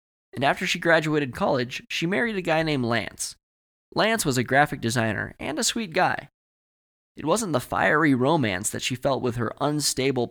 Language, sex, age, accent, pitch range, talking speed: English, male, 20-39, American, 115-145 Hz, 180 wpm